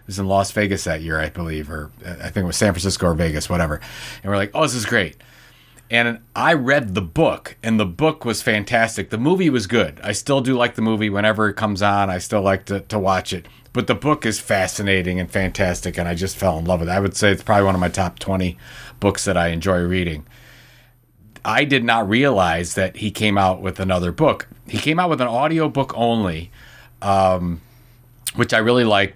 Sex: male